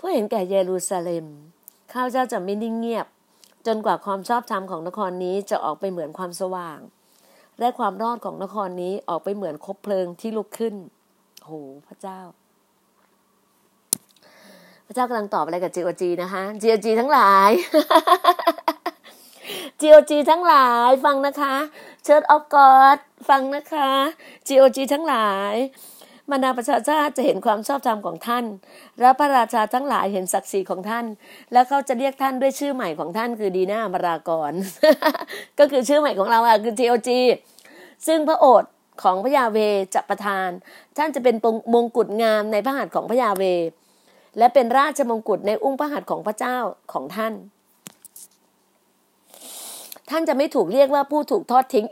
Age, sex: 20-39, female